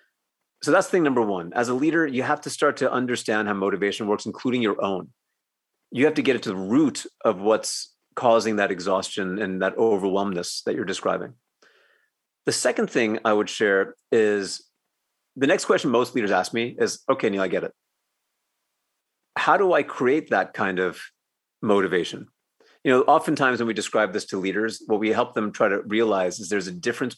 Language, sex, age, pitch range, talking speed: English, male, 30-49, 100-130 Hz, 190 wpm